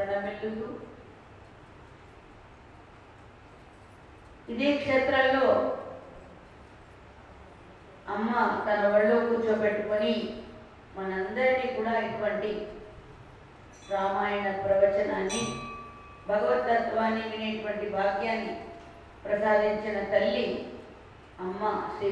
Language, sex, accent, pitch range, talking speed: English, female, Indian, 200-220 Hz, 60 wpm